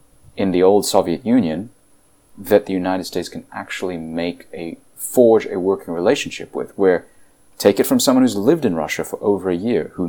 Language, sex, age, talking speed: English, male, 30-49, 190 wpm